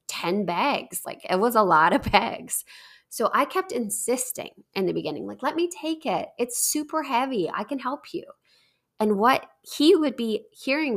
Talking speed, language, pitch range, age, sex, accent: 185 wpm, English, 180-255 Hz, 20-39, female, American